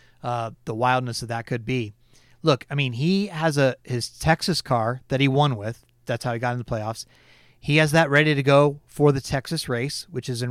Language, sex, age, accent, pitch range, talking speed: English, male, 30-49, American, 120-155 Hz, 230 wpm